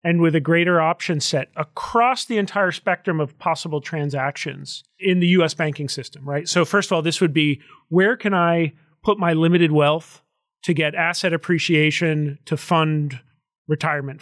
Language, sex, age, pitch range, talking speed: English, male, 40-59, 150-180 Hz, 170 wpm